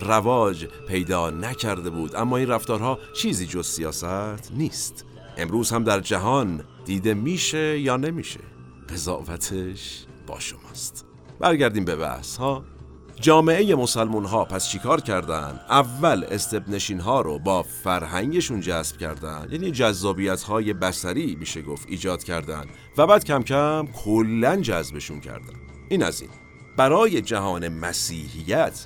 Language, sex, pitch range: Persian, male, 85-130 Hz